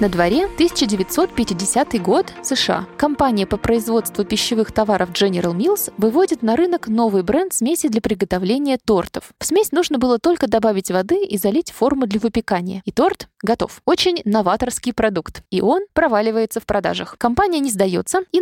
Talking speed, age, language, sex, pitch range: 155 wpm, 20-39, Russian, female, 205-280 Hz